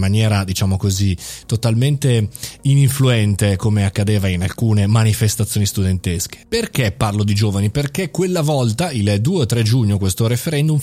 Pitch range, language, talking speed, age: 105-140 Hz, Italian, 135 wpm, 20-39